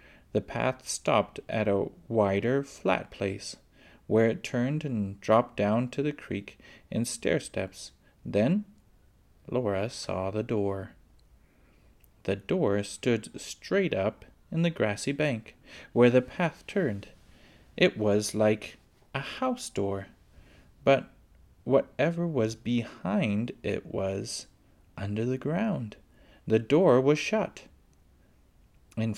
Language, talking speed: English, 120 wpm